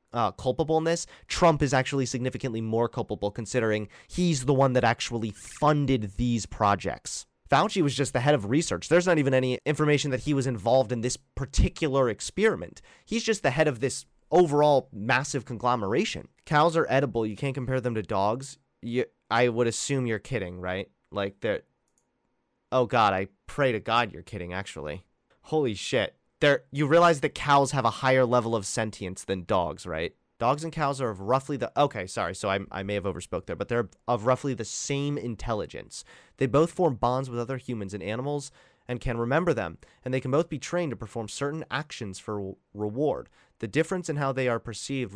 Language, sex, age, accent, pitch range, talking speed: English, male, 30-49, American, 110-140 Hz, 190 wpm